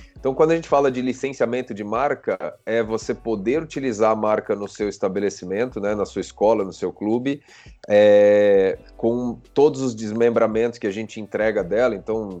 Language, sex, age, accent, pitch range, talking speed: Portuguese, male, 30-49, Brazilian, 110-130 Hz, 175 wpm